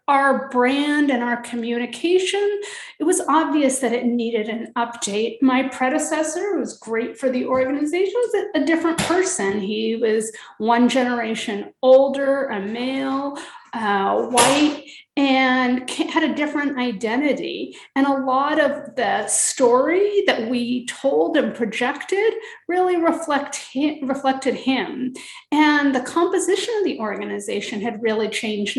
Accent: American